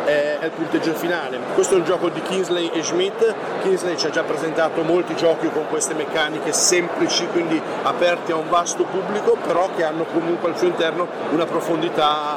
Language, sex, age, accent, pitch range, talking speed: Italian, male, 40-59, native, 160-190 Hz, 185 wpm